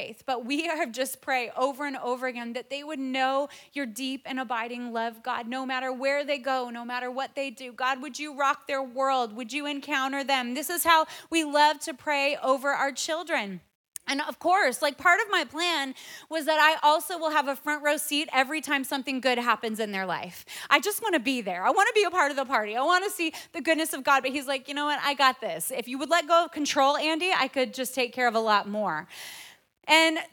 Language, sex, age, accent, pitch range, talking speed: English, female, 30-49, American, 260-320 Hz, 245 wpm